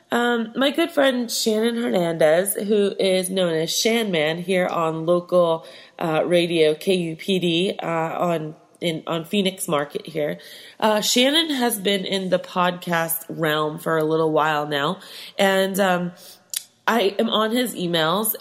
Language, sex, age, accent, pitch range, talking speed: English, female, 20-39, American, 165-215 Hz, 145 wpm